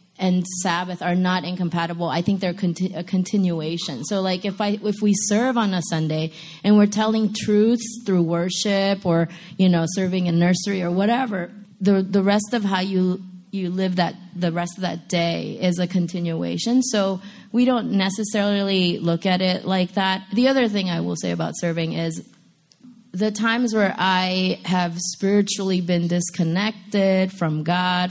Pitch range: 175-210 Hz